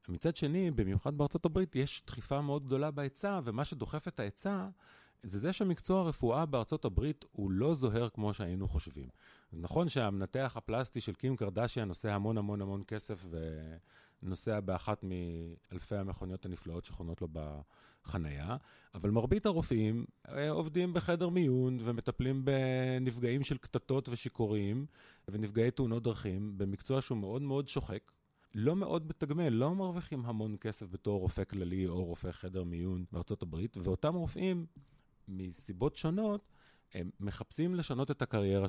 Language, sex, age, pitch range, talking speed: Hebrew, male, 30-49, 95-145 Hz, 135 wpm